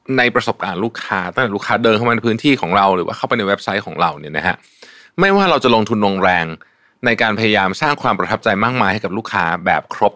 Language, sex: Thai, male